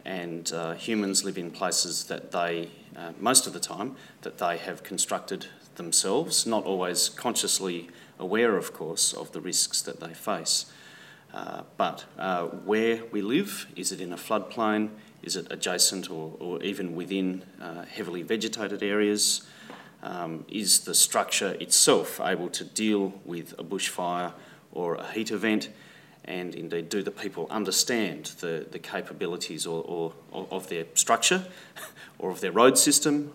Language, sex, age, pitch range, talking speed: English, male, 30-49, 85-105 Hz, 155 wpm